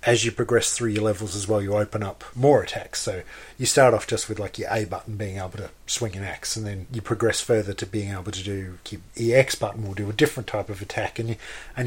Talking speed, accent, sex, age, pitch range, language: 270 wpm, Australian, male, 40-59, 100-115 Hz, English